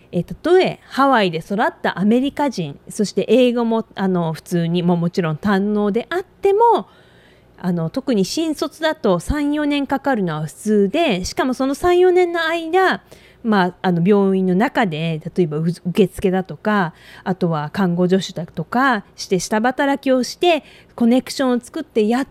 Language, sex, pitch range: English, female, 185-270 Hz